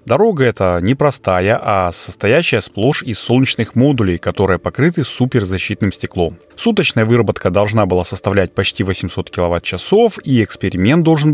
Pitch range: 95-140 Hz